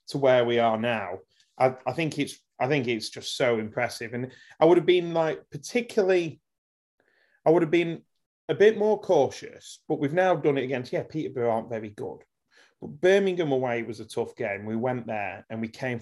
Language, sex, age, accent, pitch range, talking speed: English, male, 30-49, British, 120-165 Hz, 200 wpm